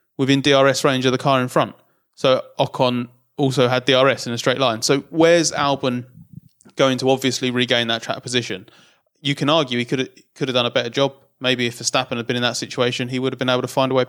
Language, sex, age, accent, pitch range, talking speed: English, male, 20-39, British, 120-135 Hz, 240 wpm